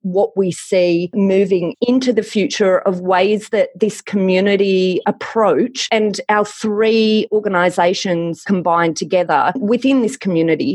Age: 30-49